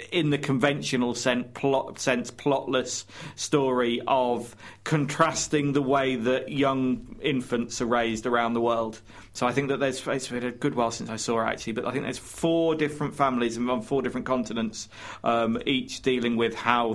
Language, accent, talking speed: English, British, 180 wpm